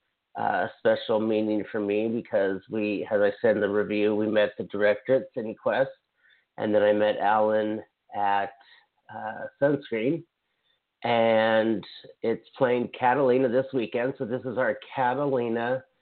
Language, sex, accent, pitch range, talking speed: English, male, American, 110-130 Hz, 145 wpm